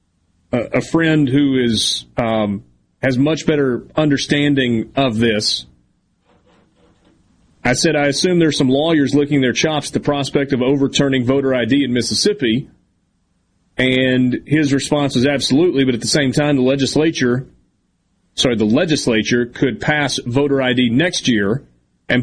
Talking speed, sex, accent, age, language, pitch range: 140 wpm, male, American, 30-49, English, 120-145 Hz